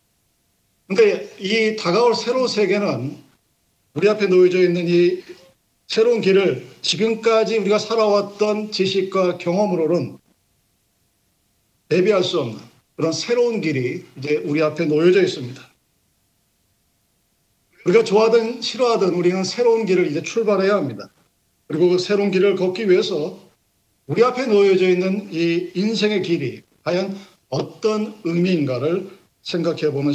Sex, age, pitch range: male, 50-69, 155-200 Hz